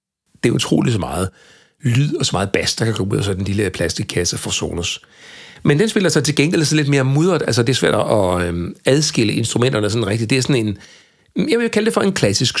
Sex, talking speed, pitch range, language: male, 235 wpm, 105-150 Hz, Danish